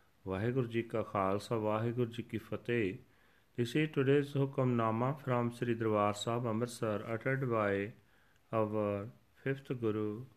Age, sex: 40-59, male